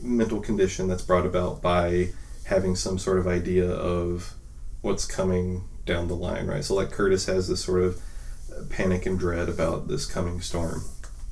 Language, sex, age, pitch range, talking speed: English, male, 30-49, 90-110 Hz, 170 wpm